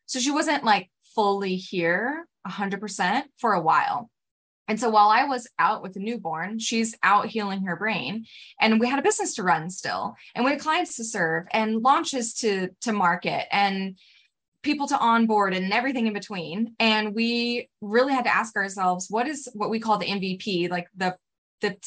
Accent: American